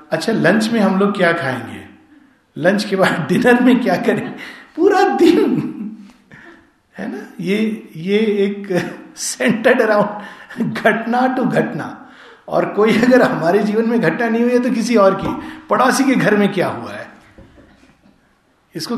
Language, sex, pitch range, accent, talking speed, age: Hindi, male, 160-230 Hz, native, 150 wpm, 50-69